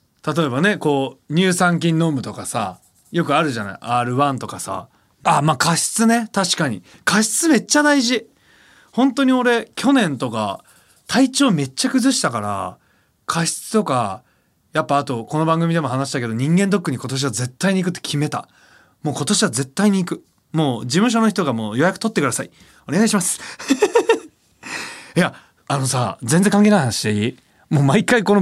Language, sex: Japanese, male